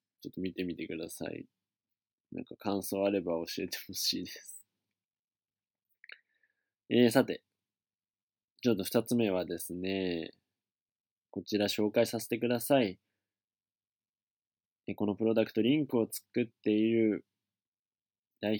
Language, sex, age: Japanese, male, 20-39